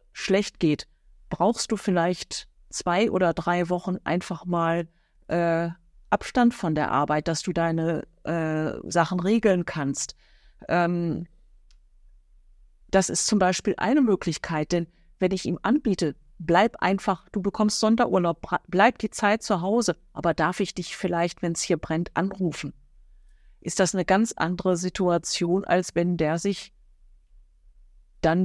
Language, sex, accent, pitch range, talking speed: German, female, German, 170-200 Hz, 140 wpm